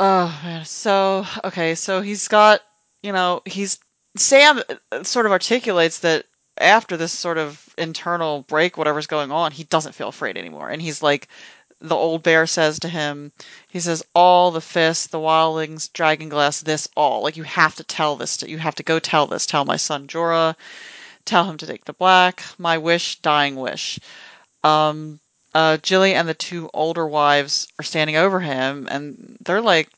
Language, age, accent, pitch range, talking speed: English, 30-49, American, 150-180 Hz, 180 wpm